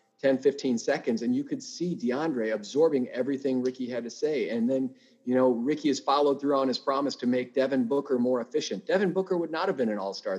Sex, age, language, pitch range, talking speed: male, 40-59, English, 110-140 Hz, 225 wpm